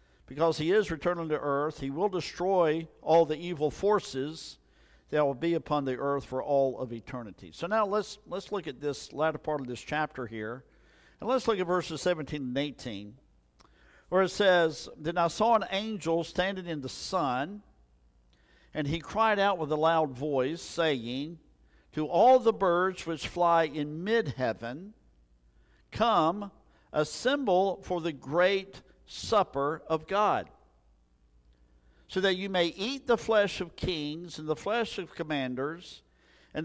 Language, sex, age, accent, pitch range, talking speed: English, male, 50-69, American, 130-185 Hz, 160 wpm